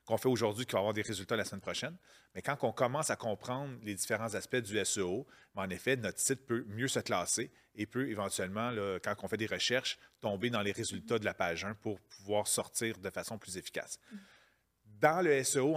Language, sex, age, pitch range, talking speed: French, male, 40-59, 110-135 Hz, 215 wpm